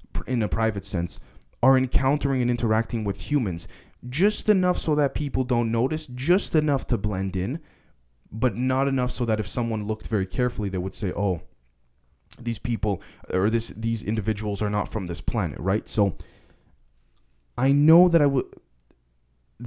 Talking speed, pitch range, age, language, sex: 165 wpm, 95-125 Hz, 20-39, English, male